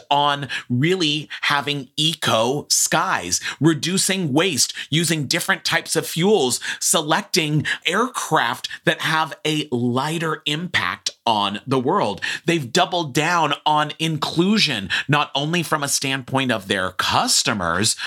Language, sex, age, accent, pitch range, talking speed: English, male, 30-49, American, 120-155 Hz, 115 wpm